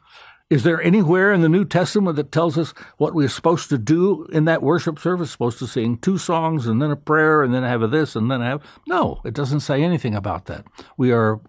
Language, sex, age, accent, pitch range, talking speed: English, male, 60-79, American, 115-165 Hz, 235 wpm